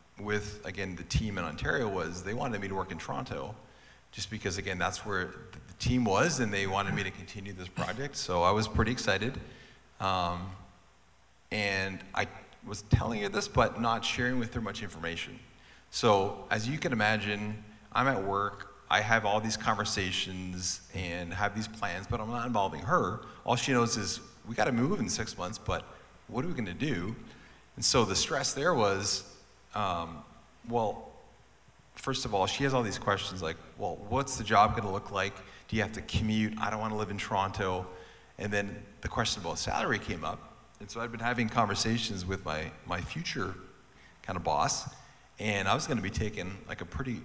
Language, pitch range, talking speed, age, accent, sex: English, 95-120 Hz, 195 wpm, 40-59, American, male